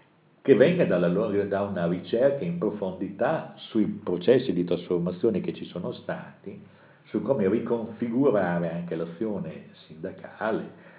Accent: native